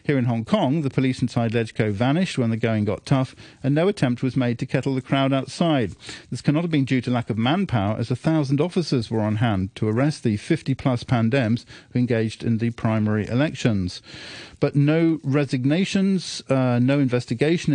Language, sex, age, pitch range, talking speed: English, male, 50-69, 115-140 Hz, 195 wpm